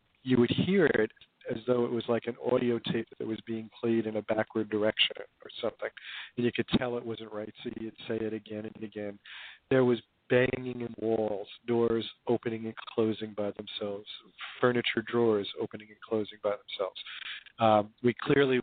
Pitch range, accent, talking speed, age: 110-125 Hz, American, 185 wpm, 40-59